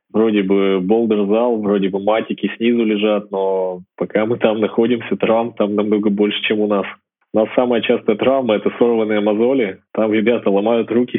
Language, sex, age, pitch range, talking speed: Russian, male, 20-39, 100-115 Hz, 175 wpm